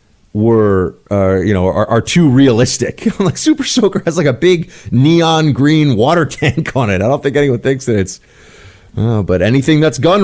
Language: English